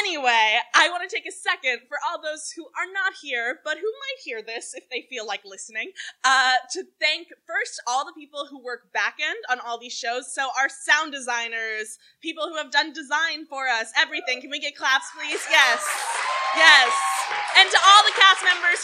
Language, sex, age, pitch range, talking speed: English, female, 20-39, 265-370 Hz, 200 wpm